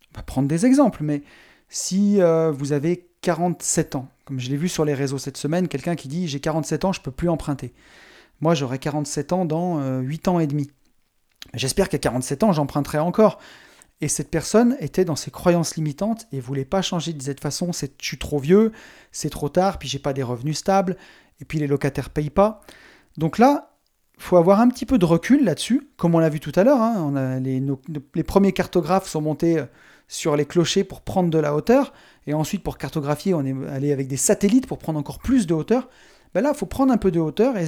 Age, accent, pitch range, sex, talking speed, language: 30-49, French, 145-200 Hz, male, 235 wpm, French